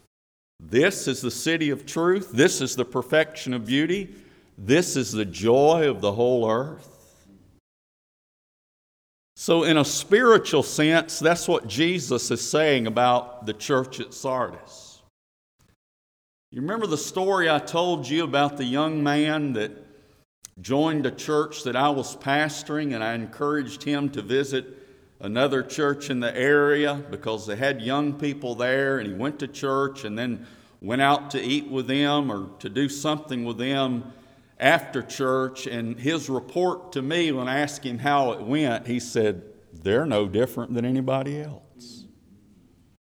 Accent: American